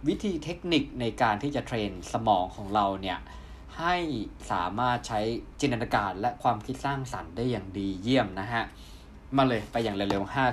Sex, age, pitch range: male, 20-39, 105-150 Hz